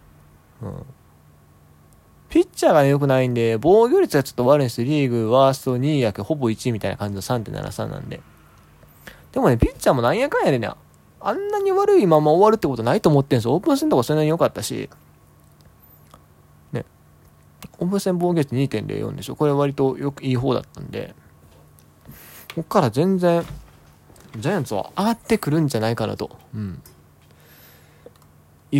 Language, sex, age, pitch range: Japanese, male, 20-39, 110-175 Hz